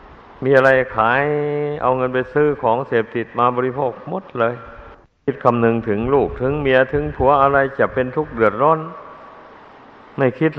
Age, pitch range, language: 60-79, 115-135 Hz, Thai